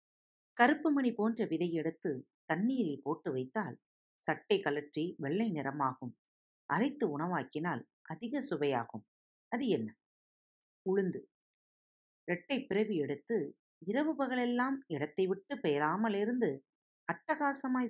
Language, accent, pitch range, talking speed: Tamil, native, 140-225 Hz, 90 wpm